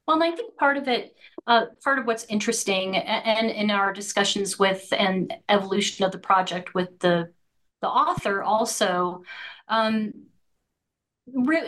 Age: 40-59